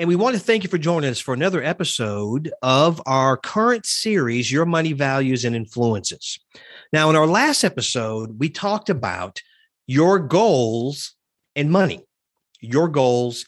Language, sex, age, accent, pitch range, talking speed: English, male, 40-59, American, 125-185 Hz, 155 wpm